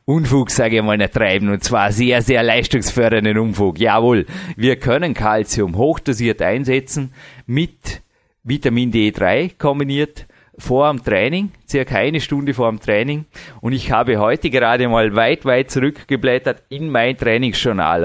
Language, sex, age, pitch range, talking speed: German, male, 30-49, 115-135 Hz, 145 wpm